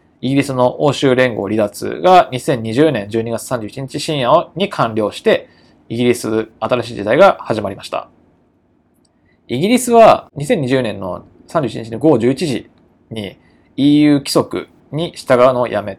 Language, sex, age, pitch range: Japanese, male, 20-39, 115-155 Hz